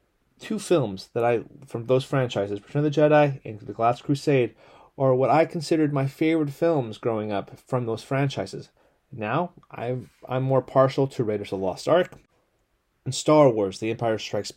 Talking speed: 180 wpm